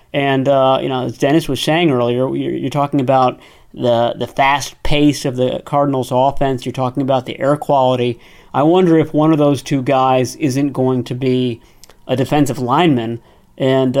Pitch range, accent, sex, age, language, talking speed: 125-150 Hz, American, male, 40-59, English, 185 wpm